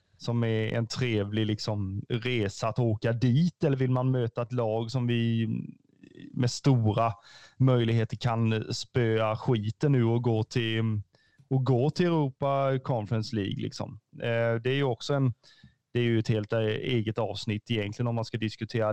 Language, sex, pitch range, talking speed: Swedish, male, 115-135 Hz, 155 wpm